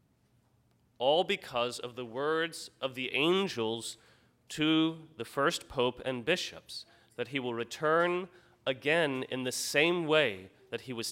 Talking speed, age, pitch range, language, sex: 140 wpm, 30-49, 115-140 Hz, English, male